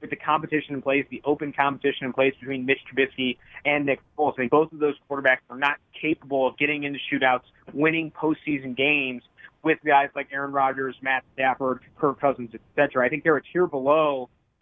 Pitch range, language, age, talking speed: 135-155 Hz, English, 30-49, 195 wpm